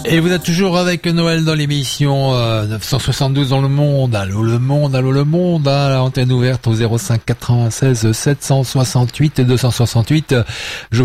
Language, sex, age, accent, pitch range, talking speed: French, male, 40-59, French, 110-135 Hz, 145 wpm